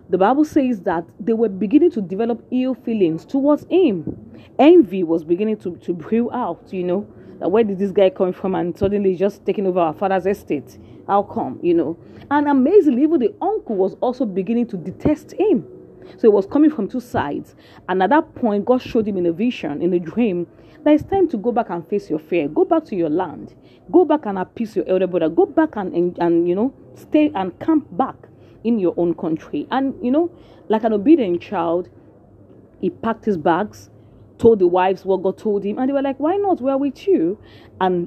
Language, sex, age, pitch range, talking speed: English, female, 40-59, 180-285 Hz, 215 wpm